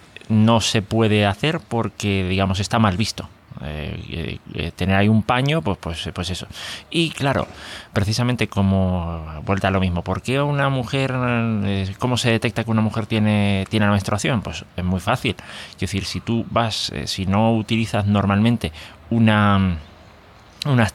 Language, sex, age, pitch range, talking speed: Spanish, male, 30-49, 95-115 Hz, 165 wpm